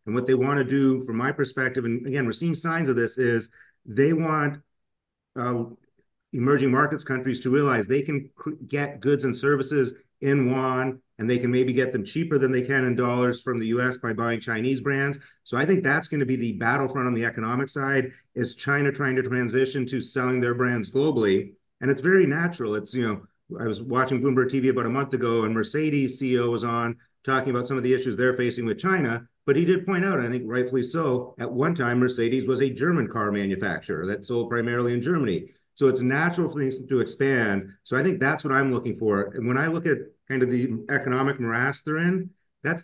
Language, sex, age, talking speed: English, male, 40-59, 220 wpm